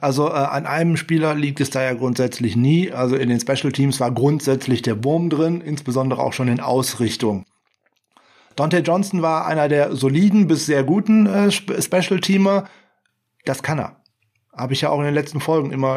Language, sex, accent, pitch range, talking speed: German, male, German, 130-160 Hz, 190 wpm